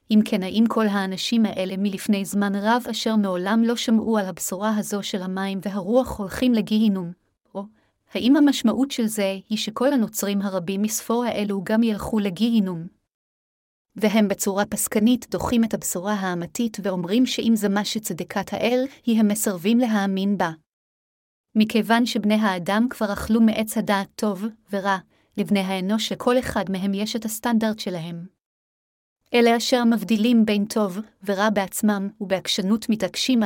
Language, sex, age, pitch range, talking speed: Hebrew, female, 30-49, 195-225 Hz, 145 wpm